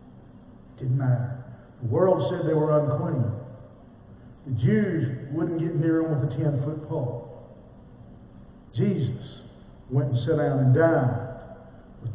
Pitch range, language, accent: 115-135 Hz, English, American